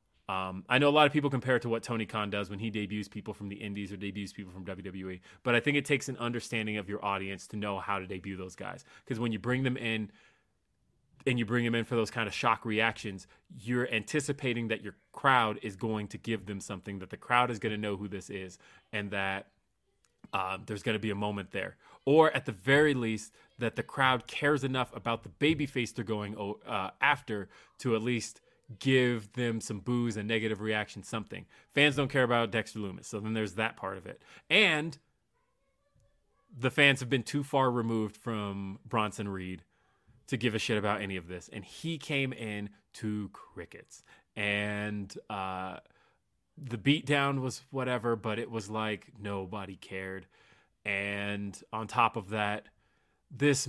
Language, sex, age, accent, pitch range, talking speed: English, male, 30-49, American, 100-120 Hz, 195 wpm